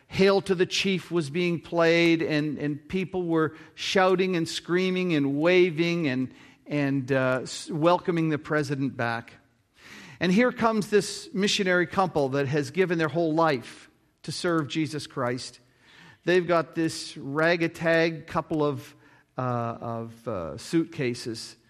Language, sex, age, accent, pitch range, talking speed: English, male, 50-69, American, 140-180 Hz, 140 wpm